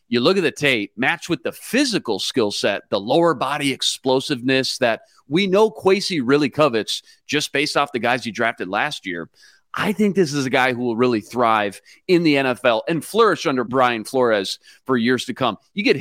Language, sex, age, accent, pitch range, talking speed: English, male, 40-59, American, 115-150 Hz, 200 wpm